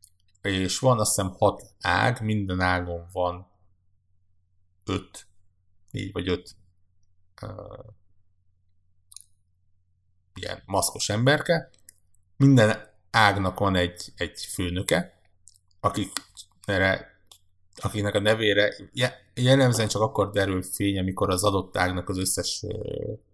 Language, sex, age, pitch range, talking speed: Hungarian, male, 50-69, 90-105 Hz, 95 wpm